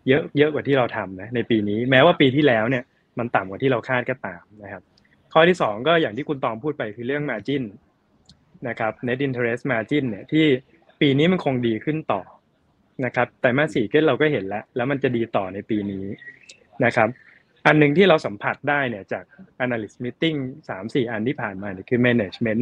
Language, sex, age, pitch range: Thai, male, 20-39, 110-145 Hz